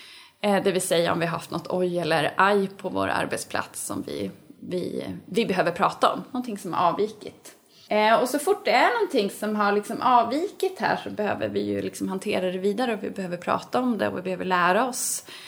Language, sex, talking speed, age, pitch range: Swedish, female, 215 wpm, 20-39, 170-230 Hz